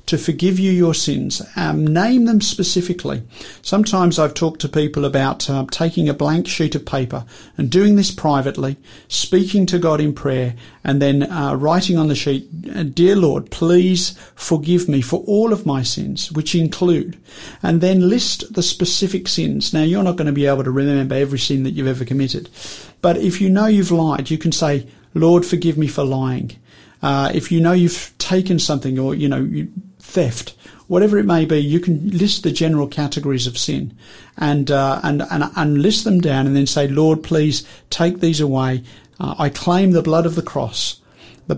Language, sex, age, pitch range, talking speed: English, male, 50-69, 135-175 Hz, 195 wpm